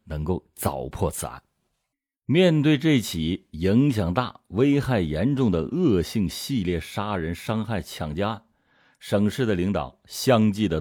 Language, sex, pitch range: Chinese, male, 95-125 Hz